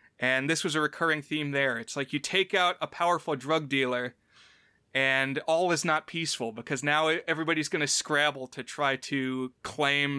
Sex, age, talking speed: male, 30-49, 185 wpm